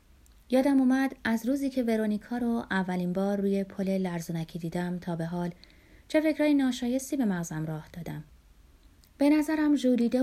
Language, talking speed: Persian, 155 wpm